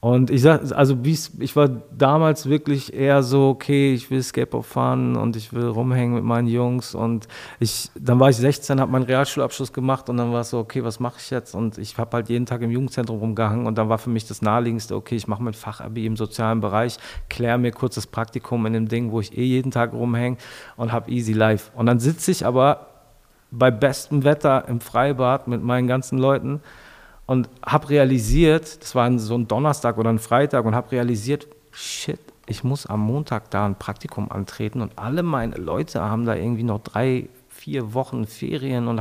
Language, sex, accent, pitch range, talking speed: German, male, German, 115-135 Hz, 205 wpm